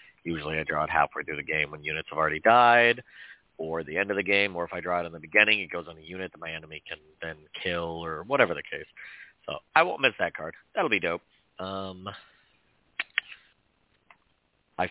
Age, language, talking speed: 40-59, English, 215 wpm